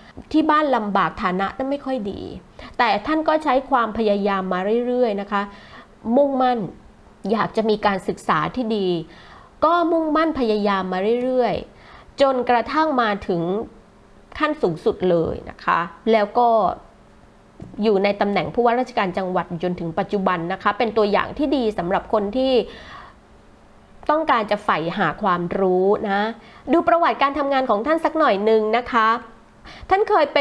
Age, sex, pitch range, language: 20-39, female, 195-255 Hz, Thai